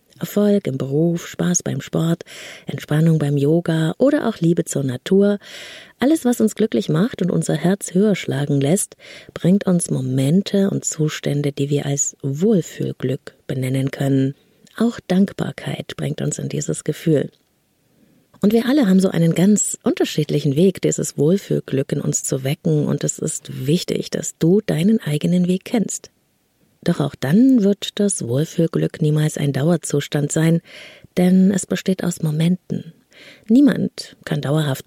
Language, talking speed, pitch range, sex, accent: German, 150 wpm, 145-195 Hz, female, German